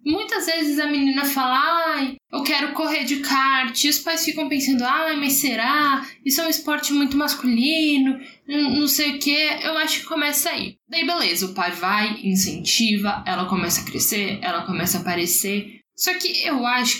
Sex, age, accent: female, 10-29, Brazilian